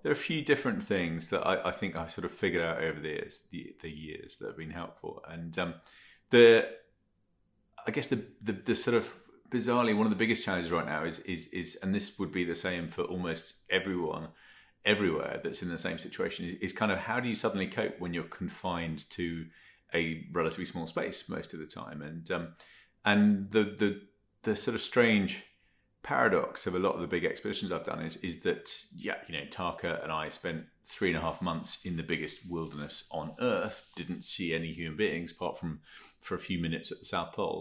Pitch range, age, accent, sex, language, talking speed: 85-105 Hz, 30-49, British, male, English, 220 wpm